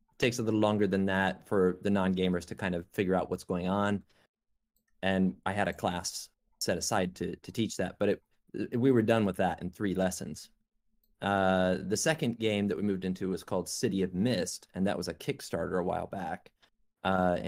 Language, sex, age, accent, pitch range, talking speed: English, male, 30-49, American, 95-110 Hz, 210 wpm